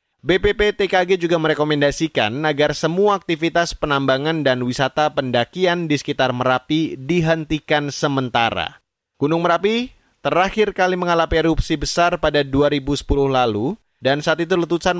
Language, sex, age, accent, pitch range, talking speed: Indonesian, male, 30-49, native, 130-170 Hz, 120 wpm